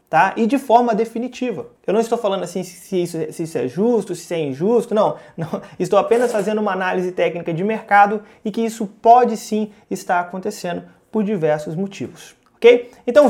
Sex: male